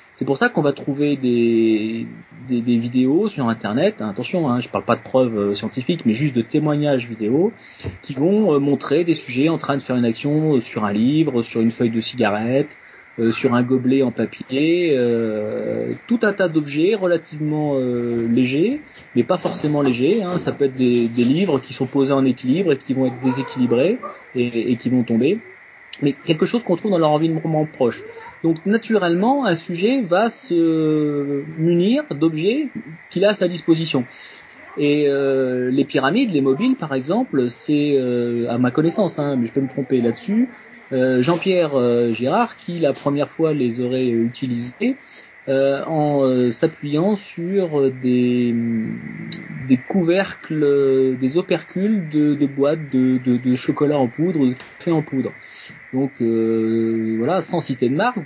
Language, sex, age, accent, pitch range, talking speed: French, male, 30-49, French, 125-165 Hz, 170 wpm